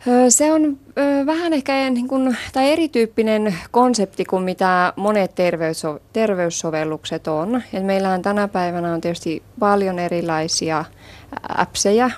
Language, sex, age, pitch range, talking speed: Finnish, female, 20-39, 165-215 Hz, 120 wpm